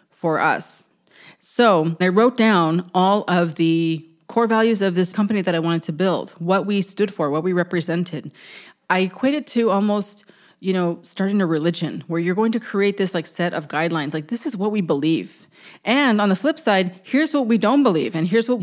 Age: 30-49